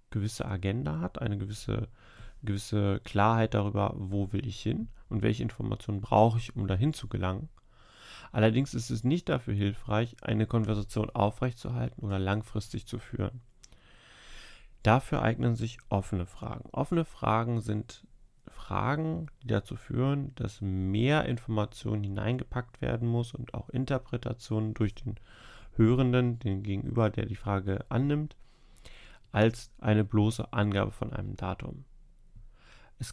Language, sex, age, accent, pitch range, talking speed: German, male, 30-49, German, 105-125 Hz, 130 wpm